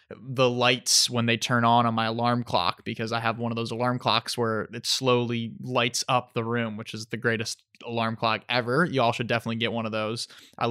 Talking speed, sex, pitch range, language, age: 225 wpm, male, 120-135 Hz, English, 20-39